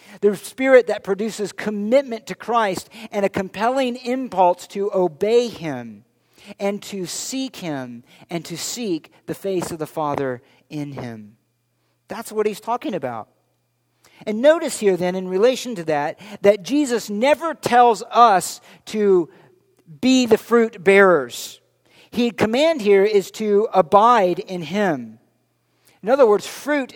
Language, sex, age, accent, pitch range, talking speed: English, male, 50-69, American, 175-235 Hz, 140 wpm